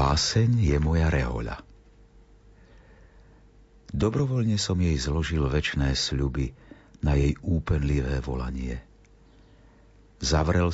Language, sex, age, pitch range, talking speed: Slovak, male, 50-69, 70-105 Hz, 85 wpm